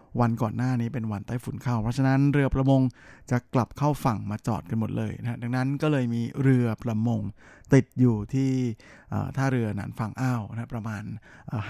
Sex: male